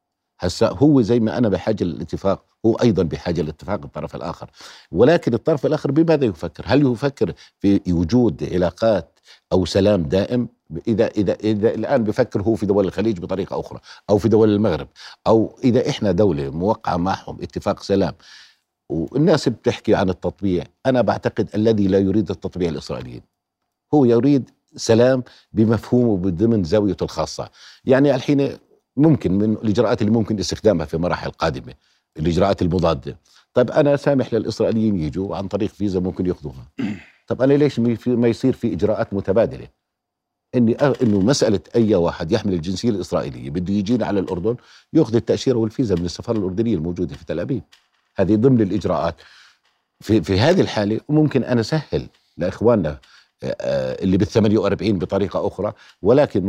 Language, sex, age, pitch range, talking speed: Arabic, male, 50-69, 95-120 Hz, 145 wpm